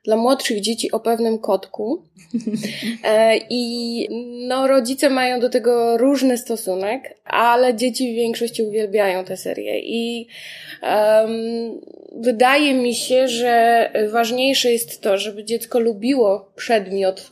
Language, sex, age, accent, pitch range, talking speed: Polish, female, 20-39, native, 220-260 Hz, 120 wpm